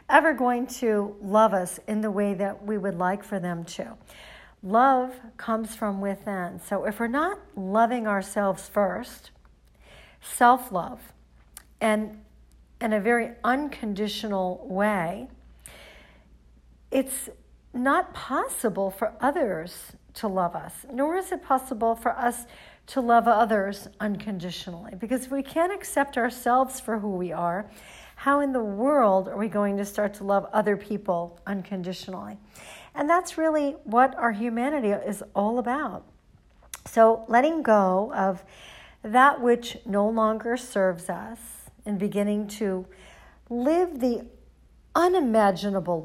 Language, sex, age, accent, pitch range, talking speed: English, female, 50-69, American, 195-250 Hz, 130 wpm